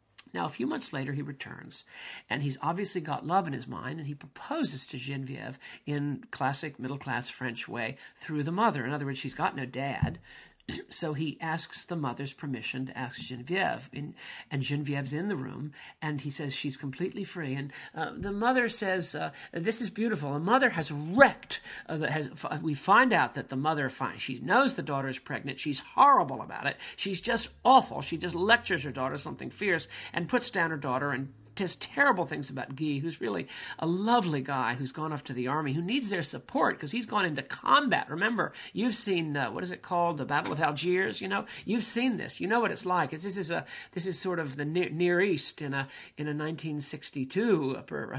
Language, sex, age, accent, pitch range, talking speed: English, male, 50-69, American, 135-180 Hz, 205 wpm